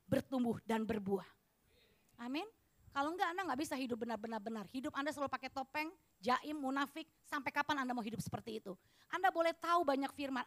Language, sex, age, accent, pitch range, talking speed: Indonesian, female, 30-49, native, 255-360 Hz, 170 wpm